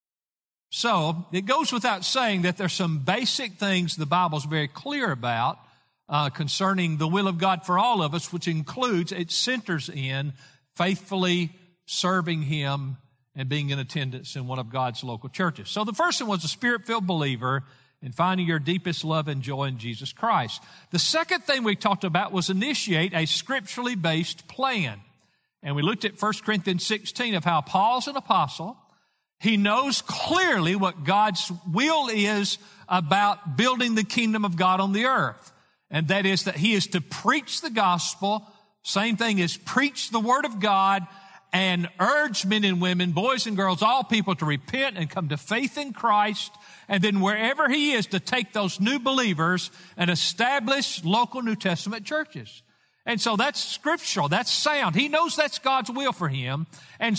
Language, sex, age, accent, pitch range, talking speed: English, male, 50-69, American, 170-230 Hz, 175 wpm